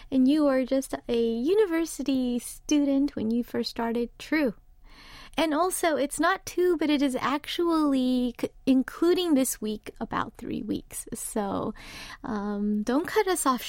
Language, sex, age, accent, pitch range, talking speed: English, female, 30-49, American, 235-290 Hz, 145 wpm